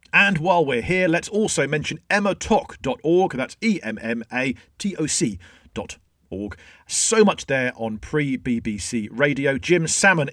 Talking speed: 115 wpm